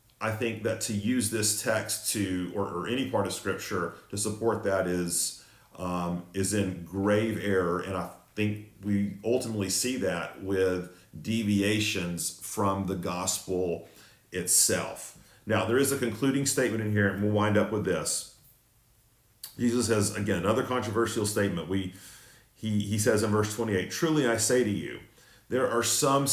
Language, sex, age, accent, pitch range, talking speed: English, male, 40-59, American, 95-115 Hz, 160 wpm